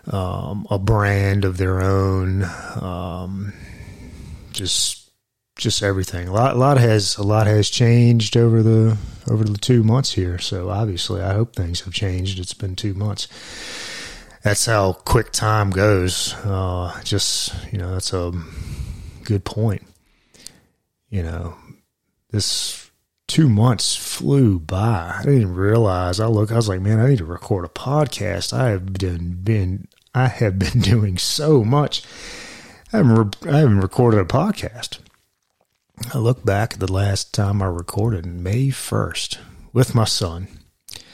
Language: English